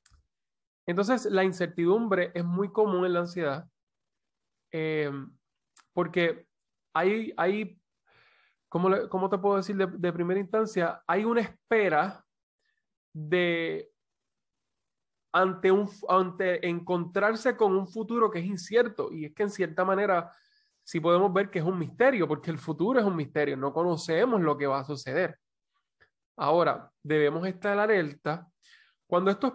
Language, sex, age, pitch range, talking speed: Spanish, male, 20-39, 155-200 Hz, 140 wpm